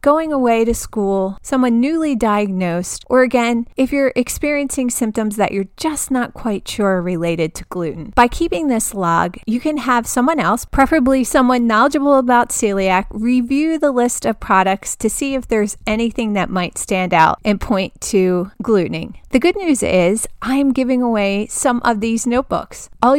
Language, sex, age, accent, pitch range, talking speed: English, female, 30-49, American, 210-260 Hz, 175 wpm